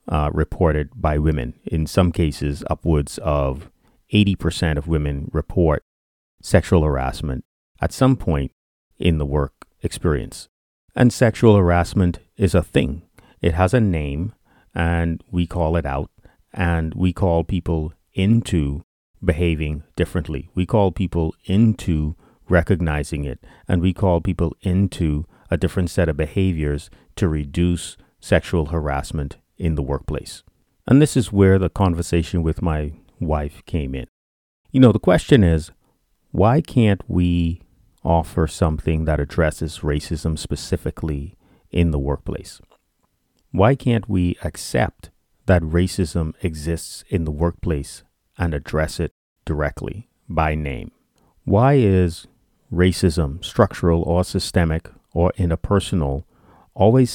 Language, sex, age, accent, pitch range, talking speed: English, male, 30-49, American, 75-95 Hz, 125 wpm